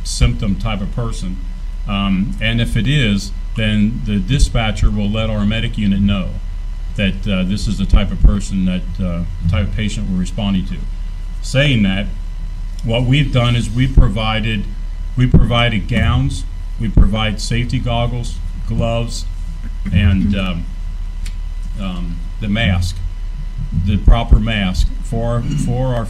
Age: 50-69